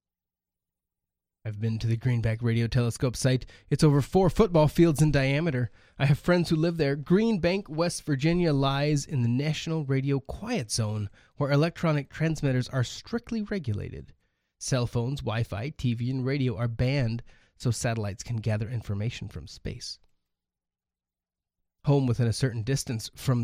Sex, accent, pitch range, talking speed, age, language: male, American, 120-165 Hz, 155 wpm, 20-39, English